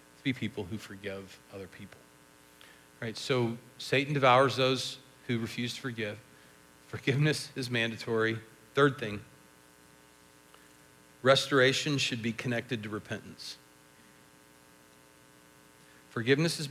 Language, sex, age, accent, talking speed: English, male, 40-59, American, 100 wpm